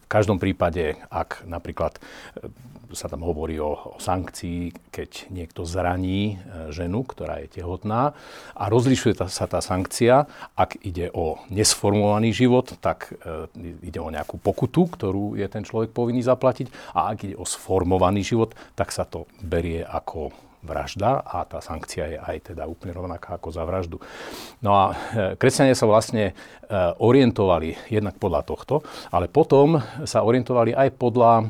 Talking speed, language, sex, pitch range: 150 wpm, Slovak, male, 90-120 Hz